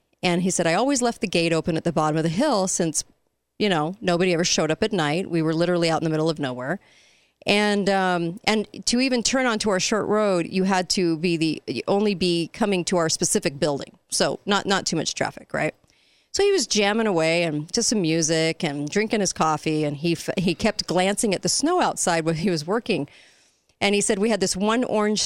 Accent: American